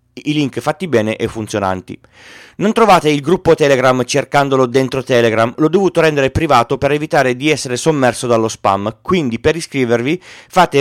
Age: 40-59